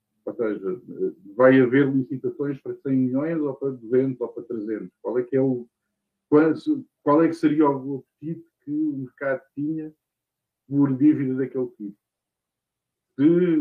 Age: 50-69